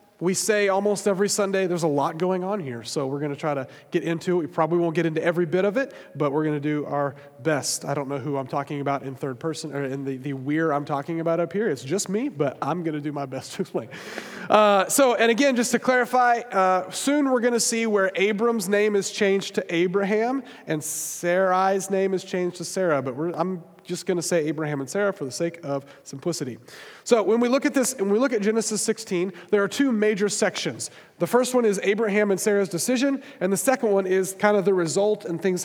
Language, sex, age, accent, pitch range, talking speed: English, male, 30-49, American, 160-210 Hz, 245 wpm